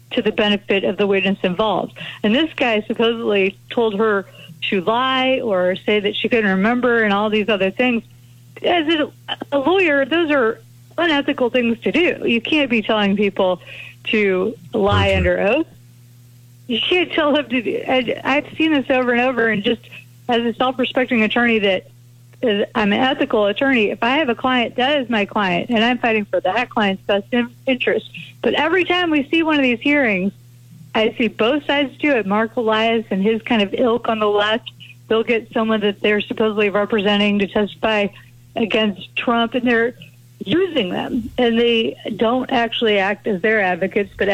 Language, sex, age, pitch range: English, female, 50-69, 195-245 Hz